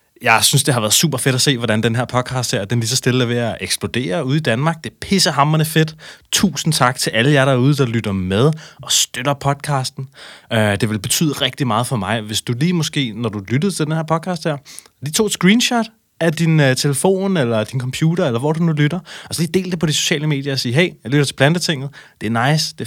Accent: native